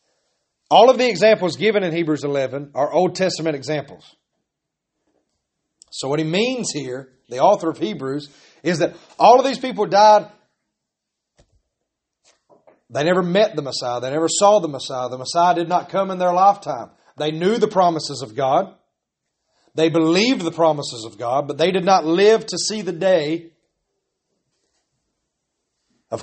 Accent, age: American, 40-59